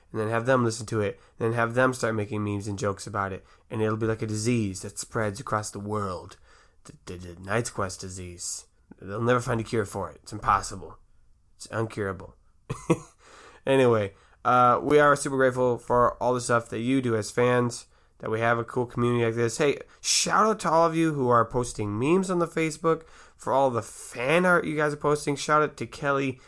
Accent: American